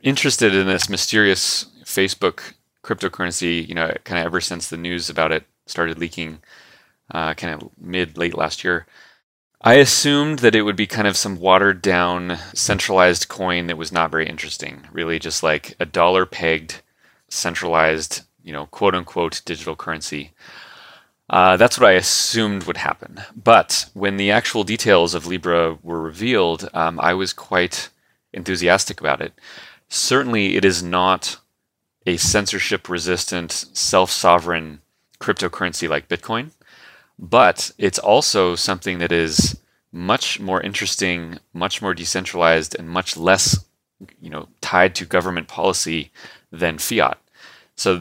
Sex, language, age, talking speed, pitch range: male, English, 30-49, 140 wpm, 85-95 Hz